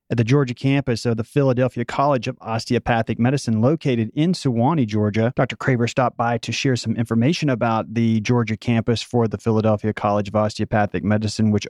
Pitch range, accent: 110-135 Hz, American